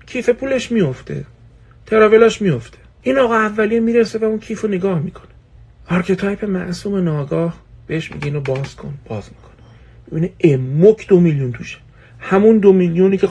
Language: Persian